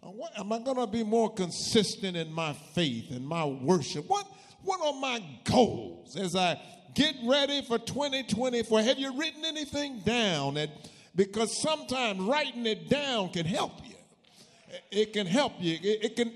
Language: English